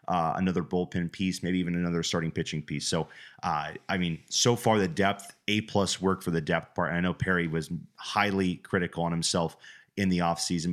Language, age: English, 30-49